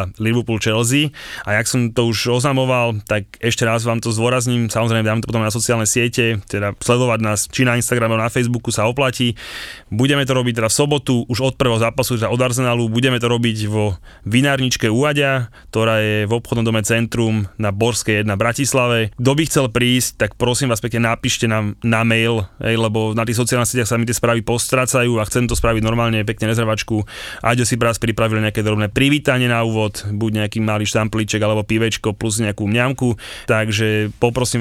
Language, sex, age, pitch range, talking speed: Slovak, male, 20-39, 110-120 Hz, 190 wpm